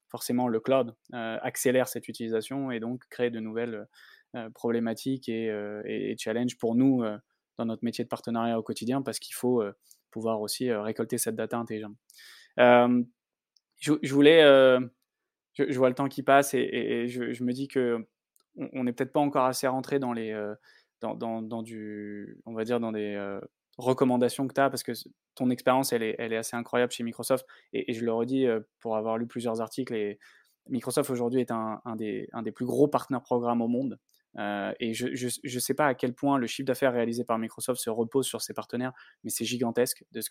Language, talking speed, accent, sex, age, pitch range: French, 220 wpm, French, male, 20-39, 115-130 Hz